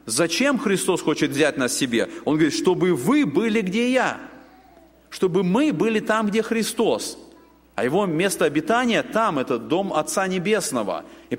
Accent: native